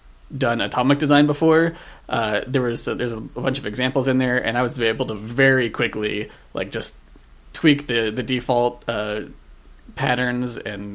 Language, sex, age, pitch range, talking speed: English, male, 20-39, 105-130 Hz, 170 wpm